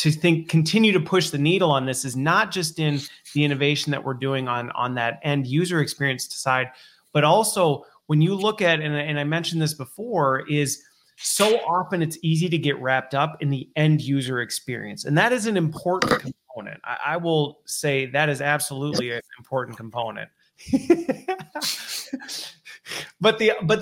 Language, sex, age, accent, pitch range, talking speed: English, male, 30-49, American, 140-190 Hz, 175 wpm